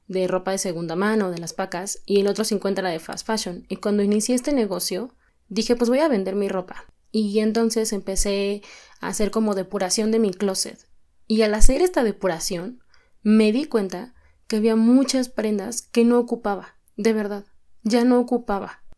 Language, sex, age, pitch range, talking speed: Spanish, female, 20-39, 195-235 Hz, 185 wpm